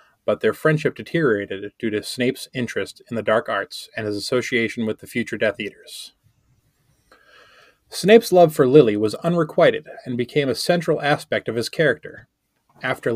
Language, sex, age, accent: English, male, 20-39, American